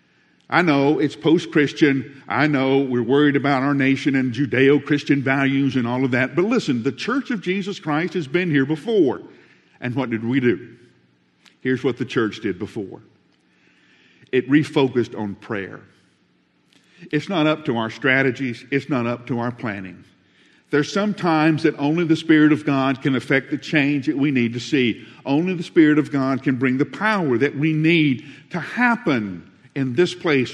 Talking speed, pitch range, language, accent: 180 wpm, 125-165 Hz, English, American